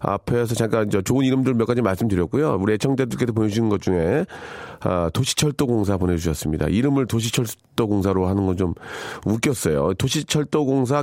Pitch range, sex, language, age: 95-145 Hz, male, Korean, 40-59